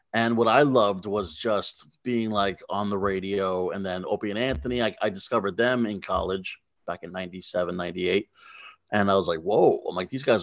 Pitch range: 100-130 Hz